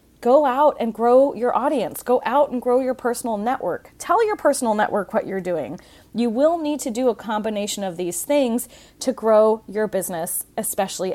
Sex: female